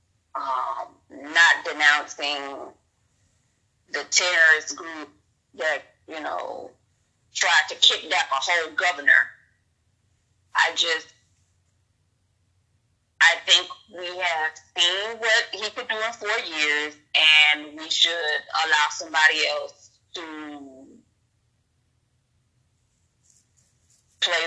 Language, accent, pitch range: English, American, 110-160 Hz